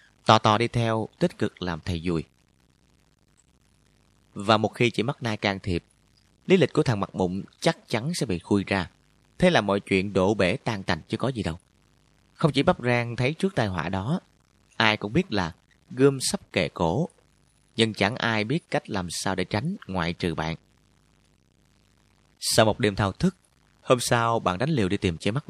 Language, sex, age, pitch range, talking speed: Vietnamese, male, 30-49, 95-125 Hz, 200 wpm